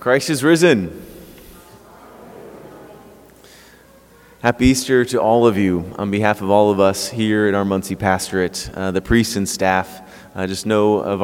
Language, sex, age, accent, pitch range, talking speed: English, male, 20-39, American, 105-140 Hz, 150 wpm